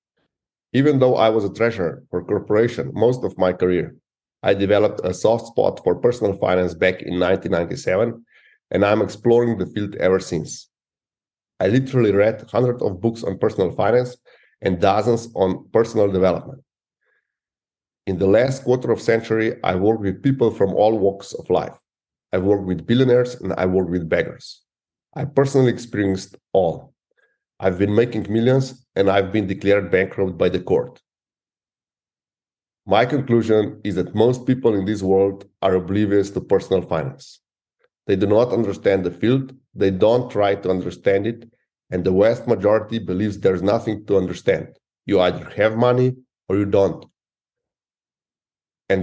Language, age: English, 40-59